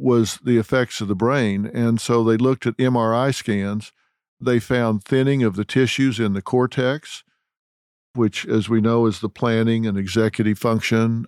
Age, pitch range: 50-69, 110-130 Hz